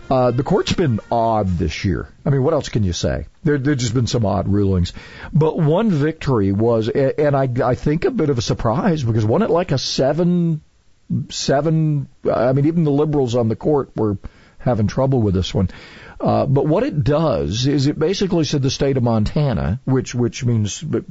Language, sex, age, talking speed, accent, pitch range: English, male, 50-69, 200 wpm, American, 100-145 Hz